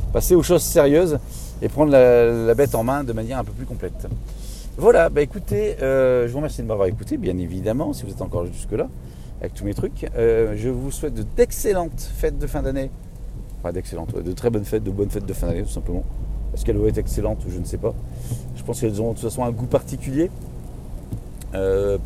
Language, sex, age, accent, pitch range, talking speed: French, male, 40-59, French, 100-125 Hz, 225 wpm